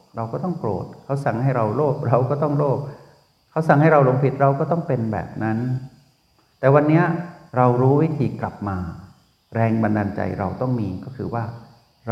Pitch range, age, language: 105-140 Hz, 60-79, Thai